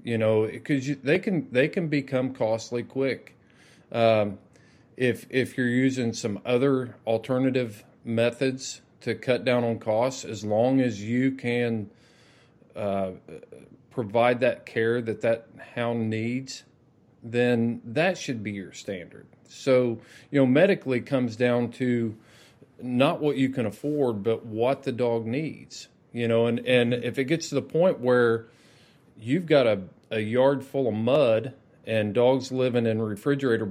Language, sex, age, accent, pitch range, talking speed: English, male, 40-59, American, 115-135 Hz, 150 wpm